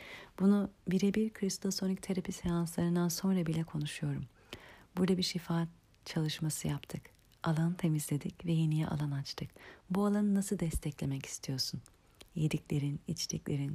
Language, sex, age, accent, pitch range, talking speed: Turkish, female, 40-59, native, 150-180 Hz, 115 wpm